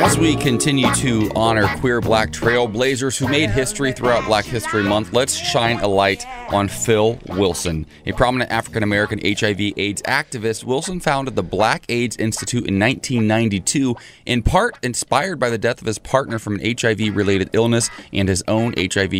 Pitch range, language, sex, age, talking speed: 95-115 Hz, English, male, 30-49, 165 wpm